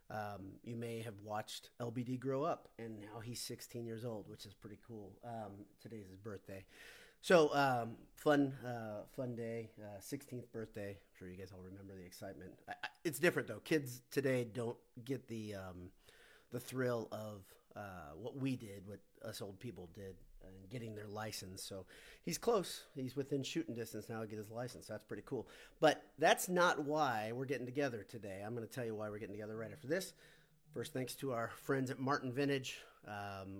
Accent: American